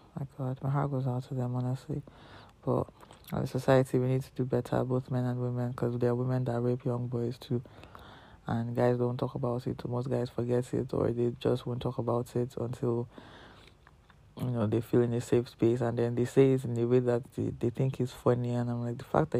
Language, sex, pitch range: English, male, 120-130 Hz